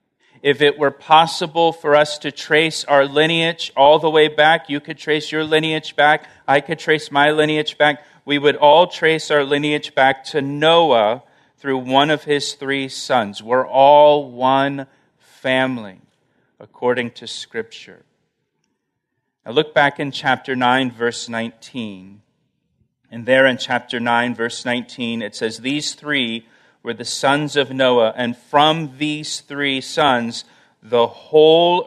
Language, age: English, 40-59